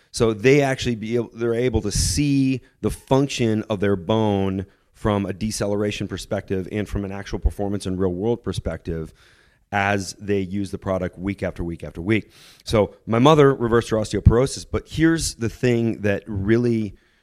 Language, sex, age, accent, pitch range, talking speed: English, male, 30-49, American, 95-115 Hz, 170 wpm